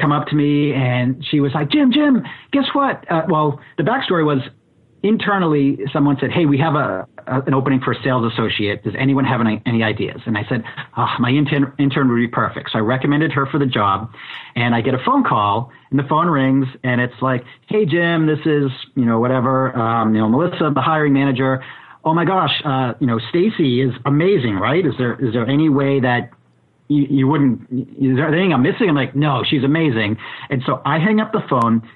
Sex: male